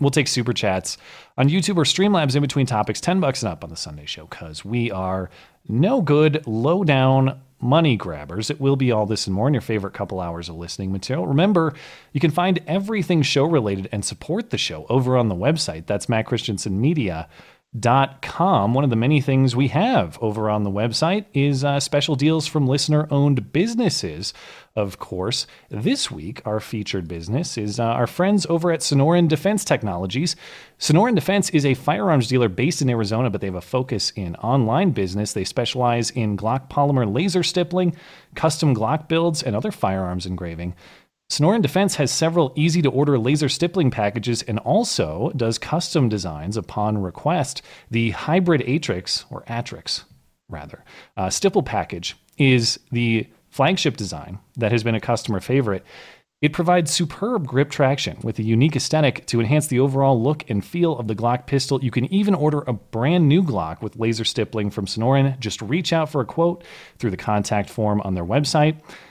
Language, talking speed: English, 180 wpm